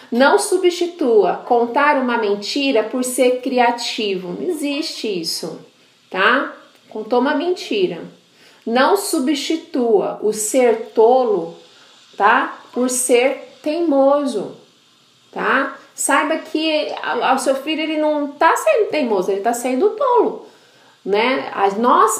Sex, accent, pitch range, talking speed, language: female, Brazilian, 230-320 Hz, 110 wpm, Portuguese